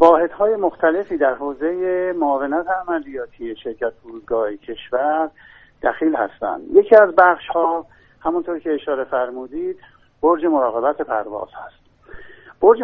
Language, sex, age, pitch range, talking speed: Persian, male, 50-69, 135-185 Hz, 110 wpm